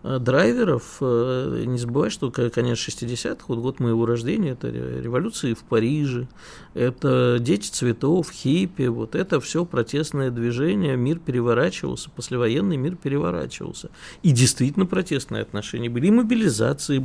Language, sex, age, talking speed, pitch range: Russian, male, 50-69, 125 wpm, 115-145 Hz